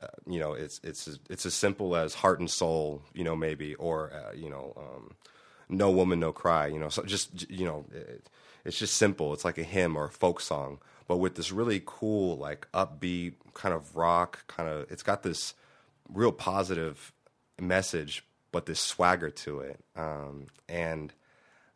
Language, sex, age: English, male, 30-49